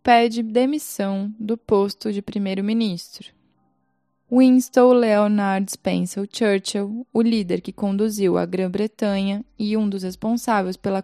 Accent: Brazilian